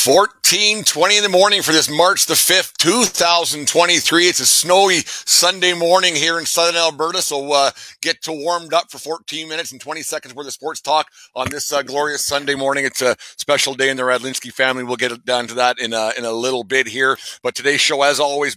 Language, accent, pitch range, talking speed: English, American, 115-145 Hz, 215 wpm